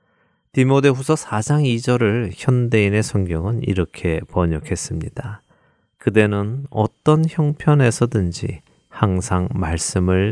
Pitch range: 95-130 Hz